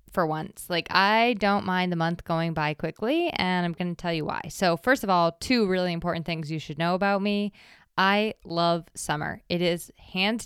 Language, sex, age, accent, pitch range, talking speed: English, female, 20-39, American, 165-200 Hz, 210 wpm